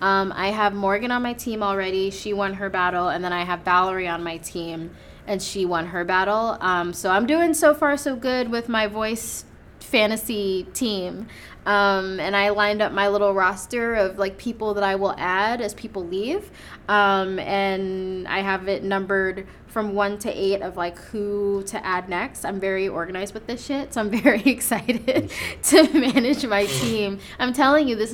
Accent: American